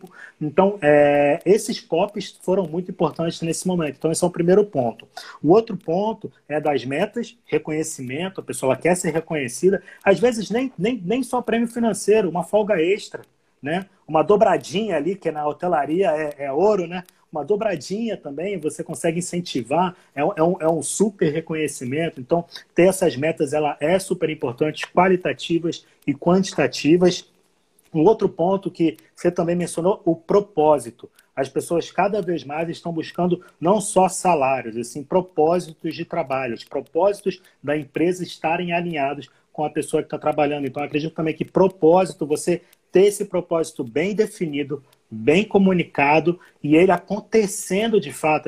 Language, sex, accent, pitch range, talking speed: Portuguese, male, Brazilian, 150-190 Hz, 155 wpm